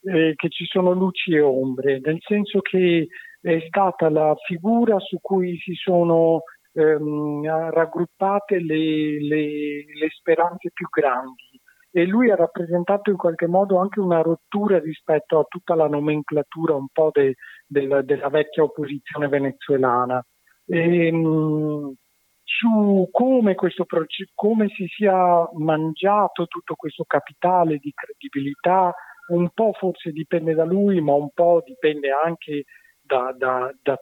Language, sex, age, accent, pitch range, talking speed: Italian, male, 50-69, native, 140-175 Hz, 130 wpm